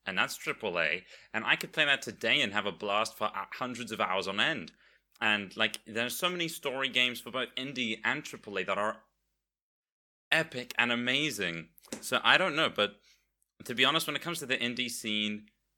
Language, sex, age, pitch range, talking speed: English, male, 30-49, 105-130 Hz, 200 wpm